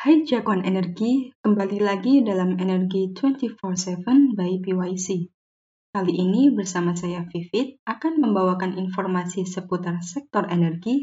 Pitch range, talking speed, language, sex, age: 180-245 Hz, 115 wpm, Indonesian, female, 10-29